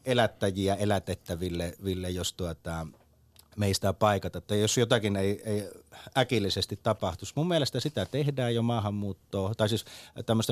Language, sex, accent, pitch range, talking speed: Finnish, male, native, 90-110 Hz, 130 wpm